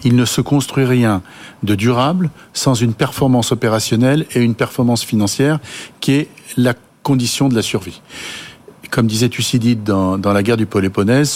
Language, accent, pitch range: French, French, 115-160 Hz